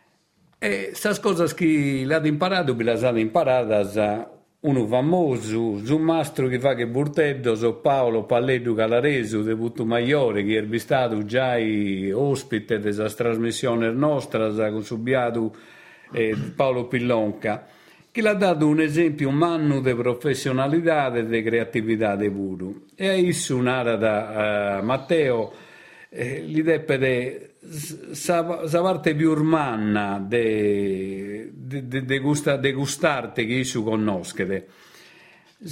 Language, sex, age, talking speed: Italian, male, 50-69, 115 wpm